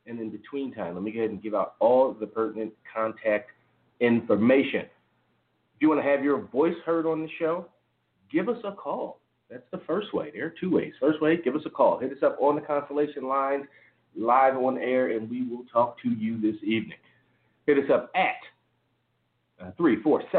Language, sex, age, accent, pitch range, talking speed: English, male, 40-59, American, 105-140 Hz, 205 wpm